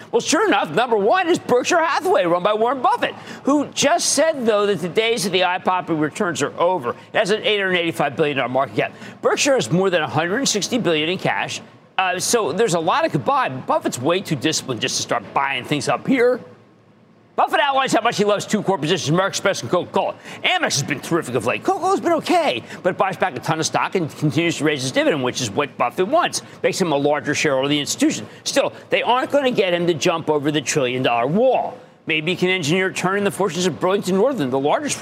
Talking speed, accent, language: 230 wpm, American, English